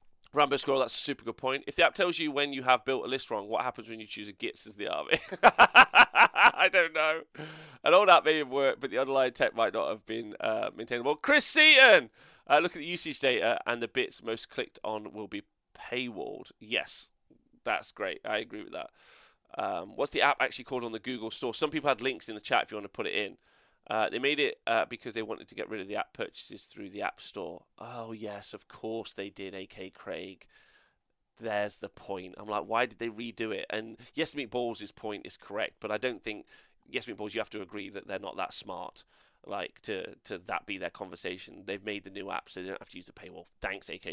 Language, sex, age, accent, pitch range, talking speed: English, male, 20-39, British, 105-140 Hz, 240 wpm